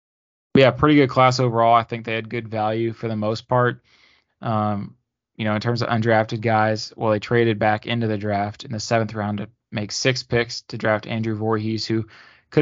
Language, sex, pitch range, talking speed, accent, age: English, male, 110-120 Hz, 210 wpm, American, 20-39